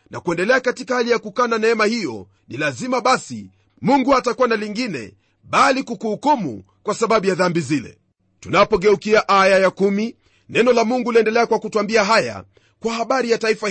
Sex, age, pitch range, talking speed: male, 40-59, 165-235 Hz, 160 wpm